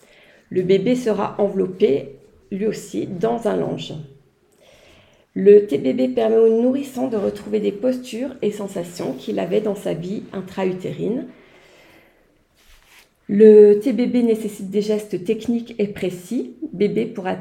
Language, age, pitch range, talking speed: French, 40-59, 185-220 Hz, 130 wpm